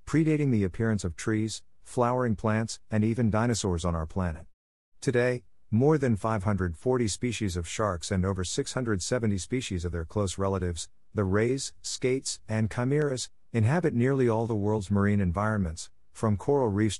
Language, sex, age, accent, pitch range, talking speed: English, male, 50-69, American, 90-115 Hz, 150 wpm